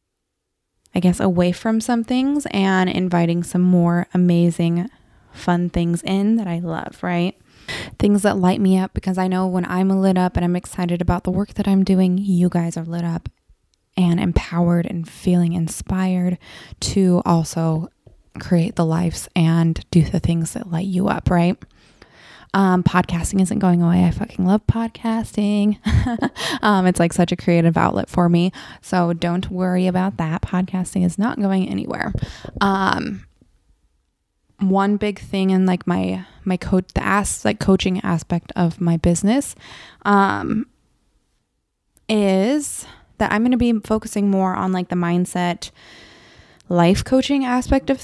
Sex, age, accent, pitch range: female, 20-39, American, 175-195 Hz